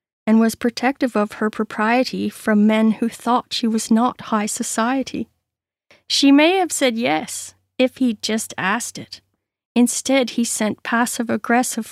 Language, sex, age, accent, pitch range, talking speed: English, female, 40-59, American, 215-255 Hz, 145 wpm